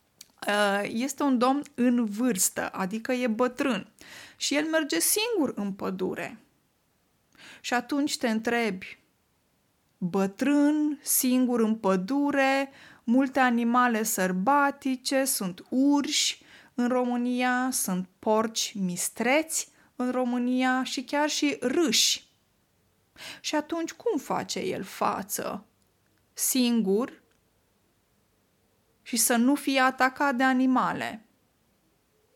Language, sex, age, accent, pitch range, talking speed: Romanian, female, 20-39, native, 200-265 Hz, 95 wpm